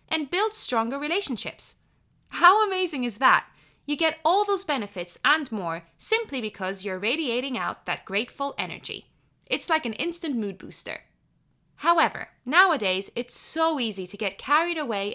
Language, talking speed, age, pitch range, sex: English, 150 wpm, 20-39, 210-295 Hz, female